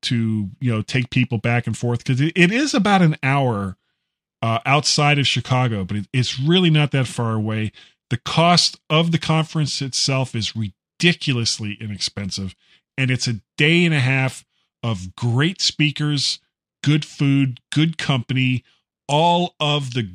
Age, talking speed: 40-59, 150 wpm